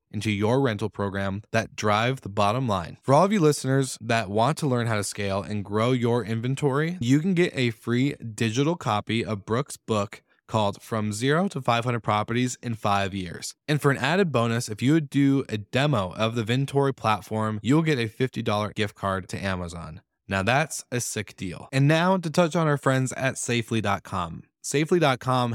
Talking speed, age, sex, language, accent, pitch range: 195 wpm, 20-39, male, English, American, 110-140 Hz